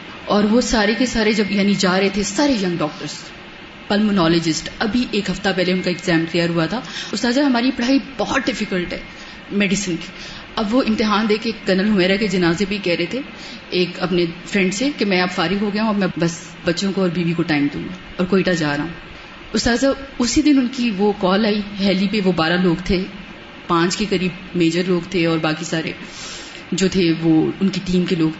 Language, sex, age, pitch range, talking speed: Urdu, female, 30-49, 180-225 Hz, 220 wpm